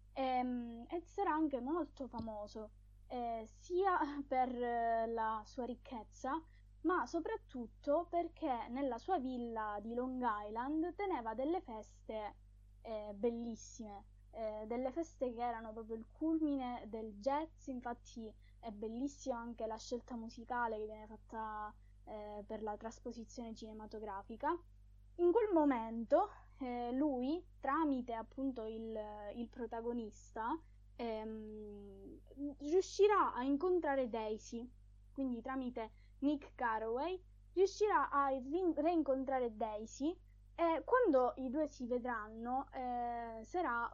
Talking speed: 115 wpm